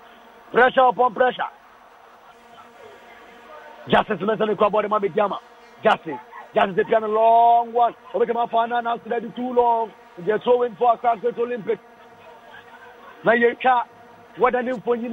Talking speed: 110 wpm